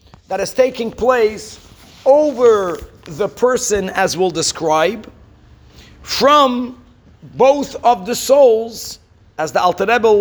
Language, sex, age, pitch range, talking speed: English, male, 50-69, 190-255 Hz, 105 wpm